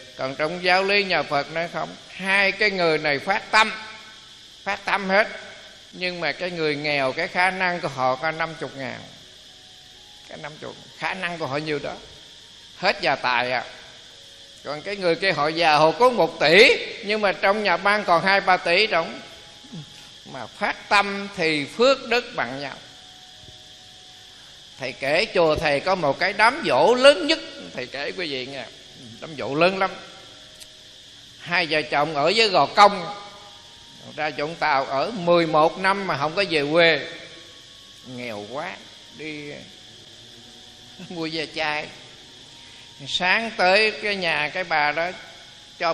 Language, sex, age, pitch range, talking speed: Vietnamese, male, 20-39, 150-195 Hz, 160 wpm